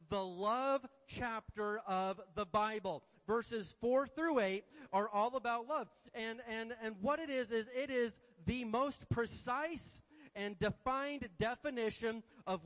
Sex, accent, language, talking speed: male, American, English, 140 wpm